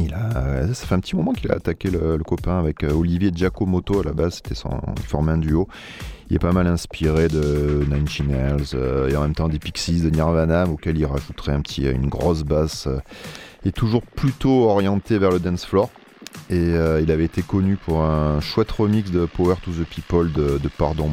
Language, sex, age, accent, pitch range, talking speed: French, male, 30-49, French, 75-95 Hz, 210 wpm